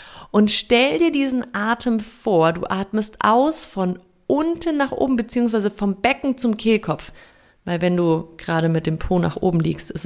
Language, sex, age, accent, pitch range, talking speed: German, female, 30-49, German, 185-255 Hz, 175 wpm